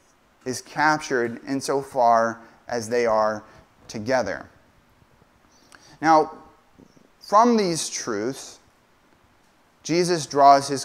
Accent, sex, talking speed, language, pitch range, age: American, male, 75 wpm, English, 120-160 Hz, 30-49